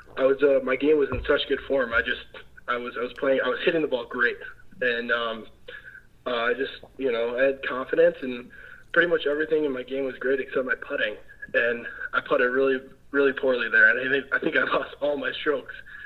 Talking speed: 230 wpm